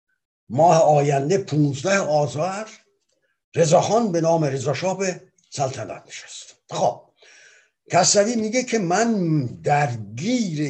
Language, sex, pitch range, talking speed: Persian, male, 140-190 Hz, 90 wpm